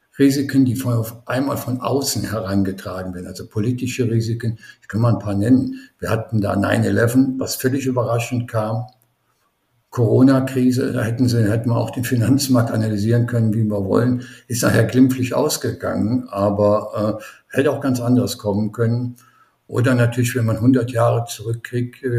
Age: 60-79